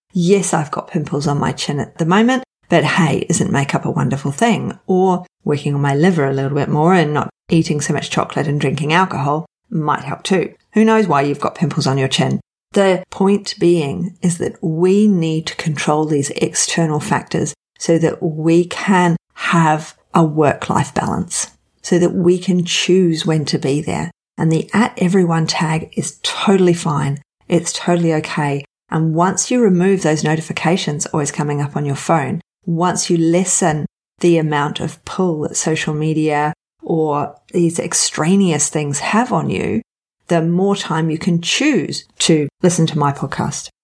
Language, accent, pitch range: English, Australian, 150-185 Hz